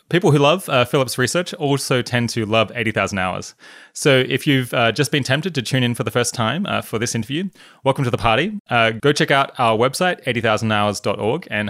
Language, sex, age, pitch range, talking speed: English, male, 20-39, 105-140 Hz, 215 wpm